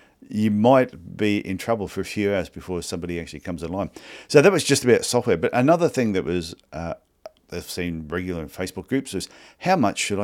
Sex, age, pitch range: male, 50-69, 85-105 Hz